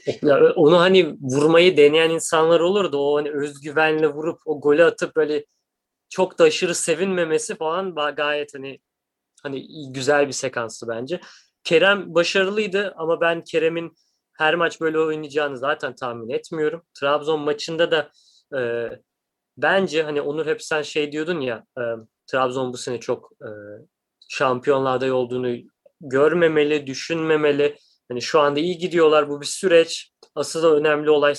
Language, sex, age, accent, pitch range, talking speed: Turkish, male, 30-49, native, 145-180 Hz, 135 wpm